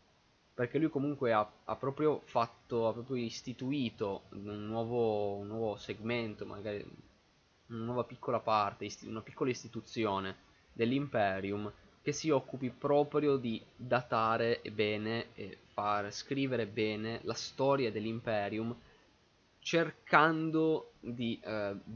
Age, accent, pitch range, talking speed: 20-39, native, 100-120 Hz, 110 wpm